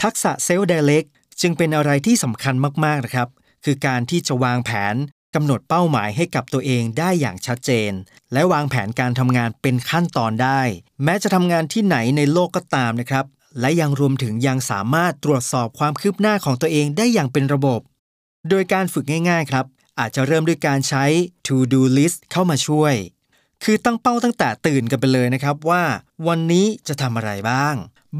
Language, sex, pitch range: Thai, male, 130-170 Hz